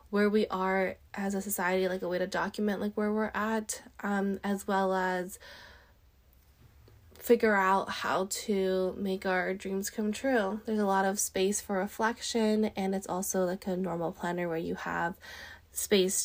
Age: 20-39